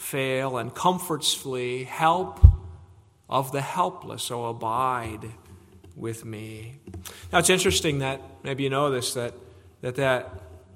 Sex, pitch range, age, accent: male, 120-170 Hz, 40-59, American